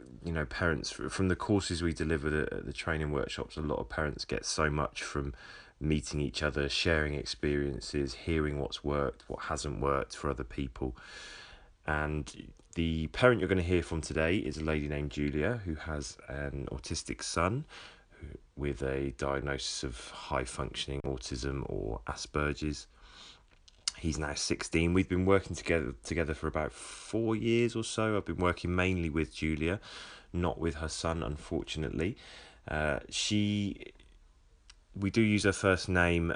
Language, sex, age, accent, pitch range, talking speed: English, male, 30-49, British, 70-85 Hz, 155 wpm